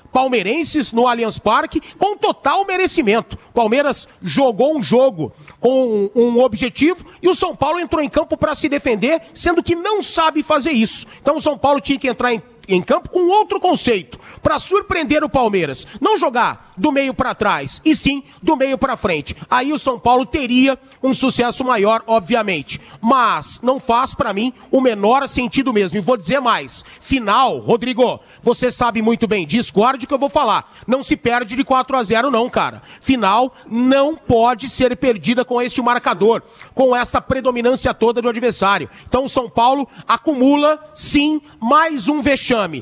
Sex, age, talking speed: male, 40-59, 175 wpm